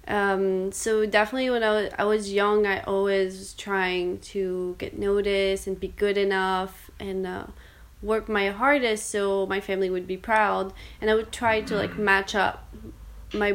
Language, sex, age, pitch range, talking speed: English, female, 20-39, 190-215 Hz, 175 wpm